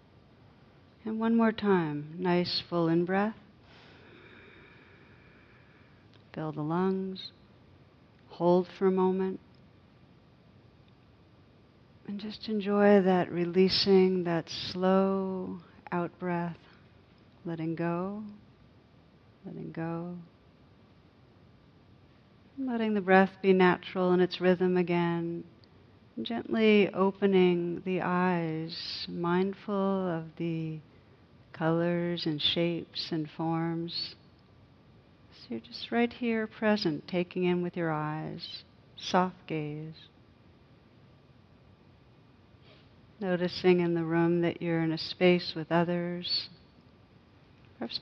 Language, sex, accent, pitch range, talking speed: English, female, American, 155-185 Hz, 90 wpm